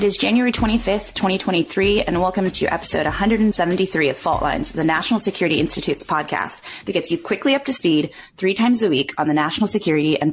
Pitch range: 155-210 Hz